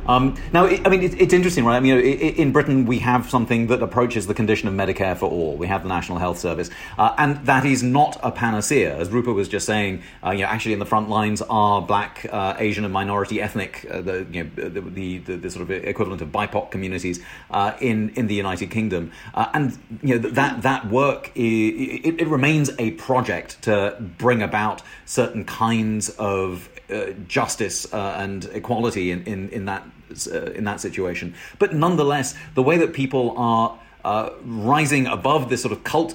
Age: 30-49